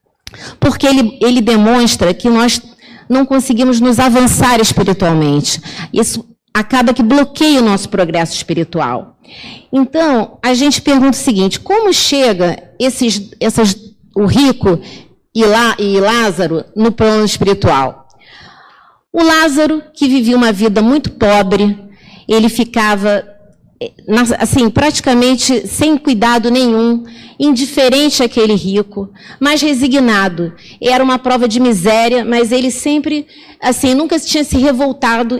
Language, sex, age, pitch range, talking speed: Portuguese, female, 40-59, 205-260 Hz, 115 wpm